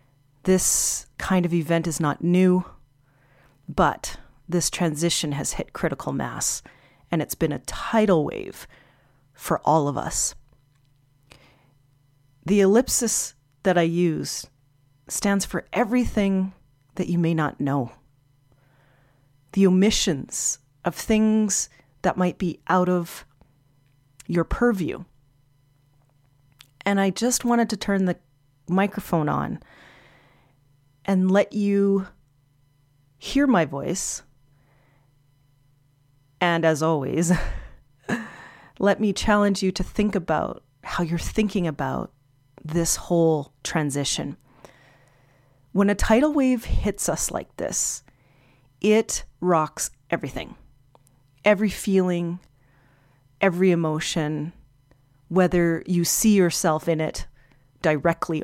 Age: 40-59